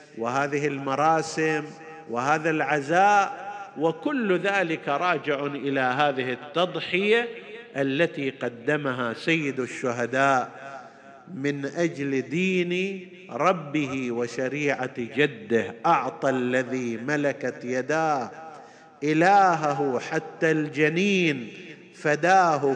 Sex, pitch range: male, 140-180 Hz